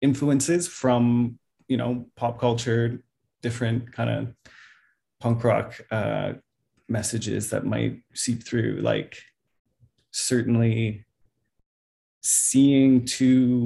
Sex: male